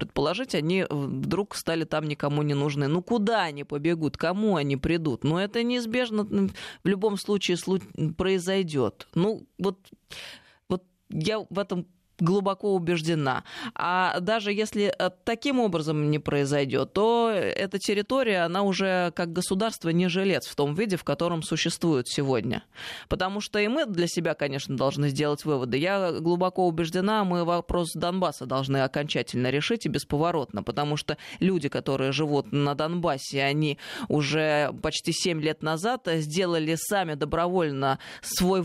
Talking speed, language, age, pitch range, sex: 145 wpm, Russian, 20-39, 150-200 Hz, female